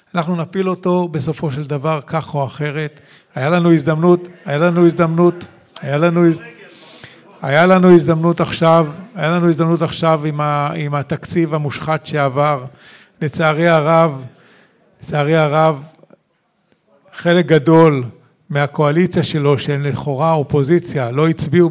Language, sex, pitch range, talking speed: Hebrew, male, 150-170 Hz, 110 wpm